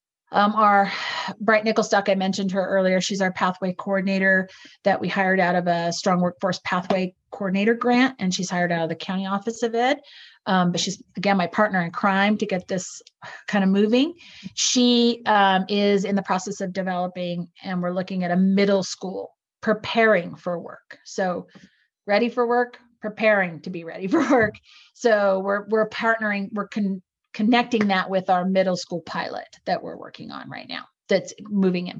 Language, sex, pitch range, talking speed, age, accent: English, female, 180-210 Hz, 180 wpm, 40-59, American